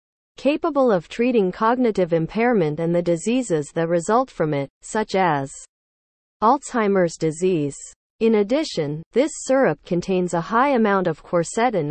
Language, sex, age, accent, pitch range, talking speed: English, female, 40-59, American, 165-230 Hz, 130 wpm